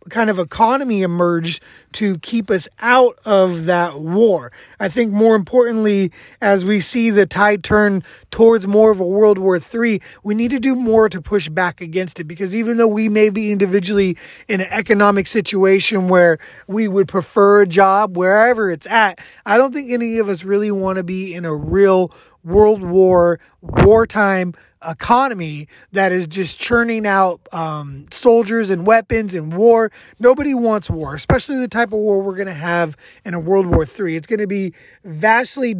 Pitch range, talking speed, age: 180-225 Hz, 180 wpm, 20-39